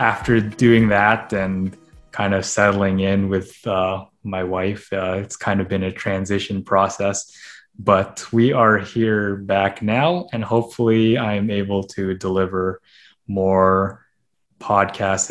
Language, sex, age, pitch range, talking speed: English, male, 20-39, 95-110 Hz, 135 wpm